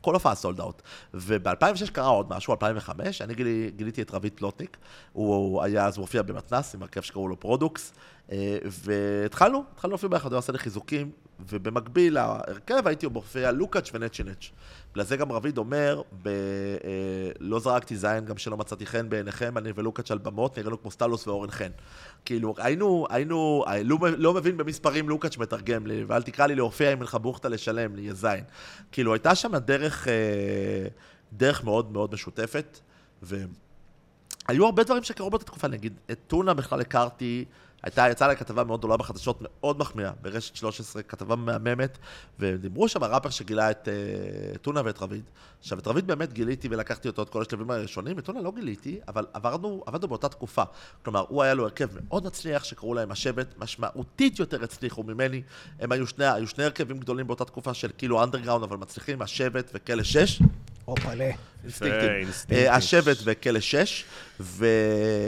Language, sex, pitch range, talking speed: Hebrew, male, 105-135 Hz, 155 wpm